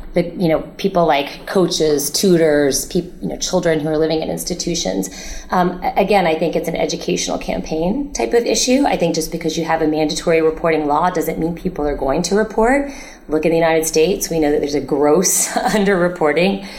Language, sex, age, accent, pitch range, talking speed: English, female, 30-49, American, 150-180 Hz, 200 wpm